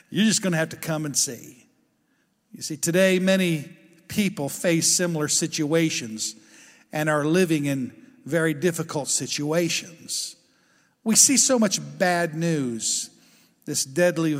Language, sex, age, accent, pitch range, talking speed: English, male, 50-69, American, 145-180 Hz, 135 wpm